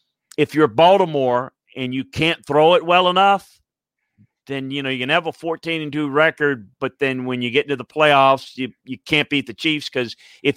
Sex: male